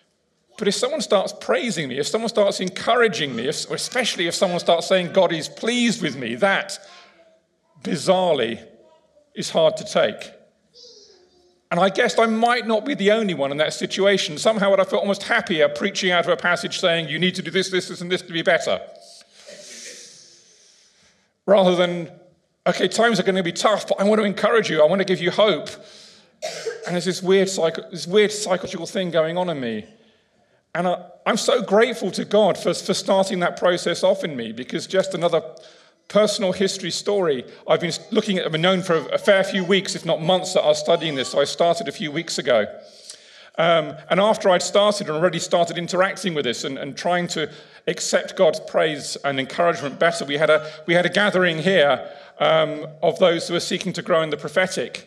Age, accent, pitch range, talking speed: 40-59, British, 170-205 Hz, 195 wpm